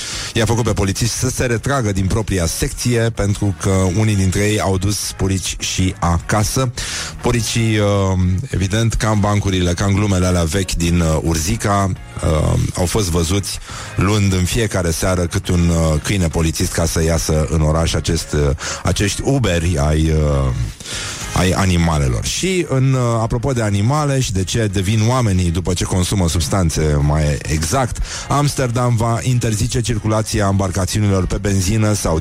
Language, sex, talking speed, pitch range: Romanian, male, 145 wpm, 85-110 Hz